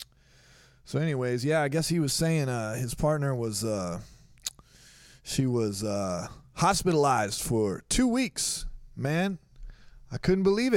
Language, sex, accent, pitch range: English, male, American, 125-165 Hz